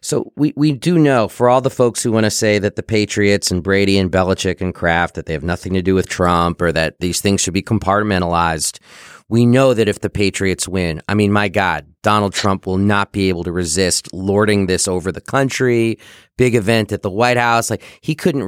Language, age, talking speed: English, 30-49, 225 wpm